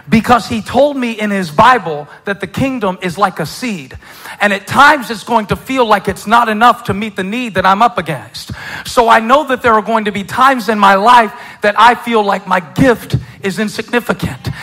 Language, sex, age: English, male, 40-59